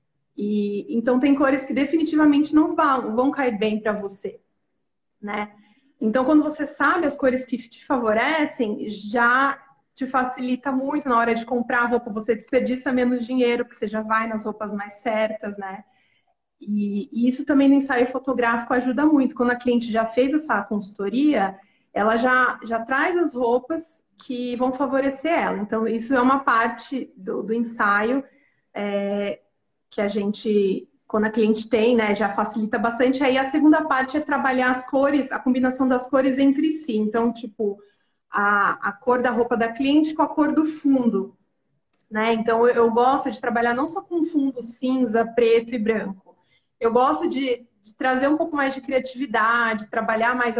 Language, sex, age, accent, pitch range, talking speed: Portuguese, female, 30-49, Brazilian, 220-270 Hz, 170 wpm